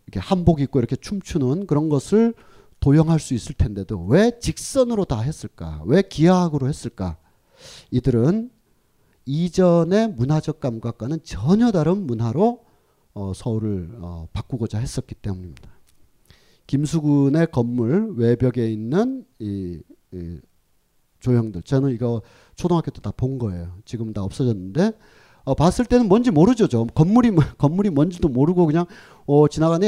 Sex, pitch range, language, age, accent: male, 110-175 Hz, Korean, 40-59, native